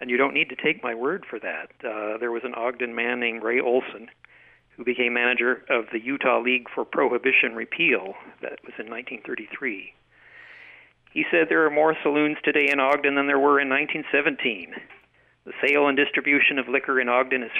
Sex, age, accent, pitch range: male, 50-69, American, 120-150 Hz